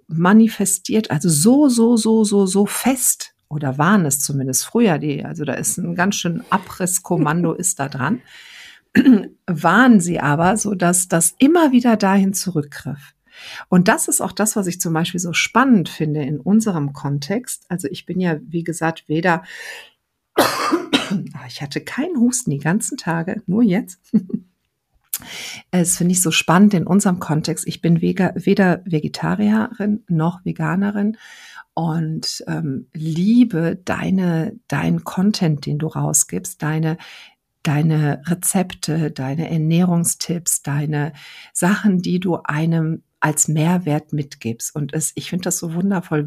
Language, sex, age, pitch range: German, female, 50-69, 160-210 Hz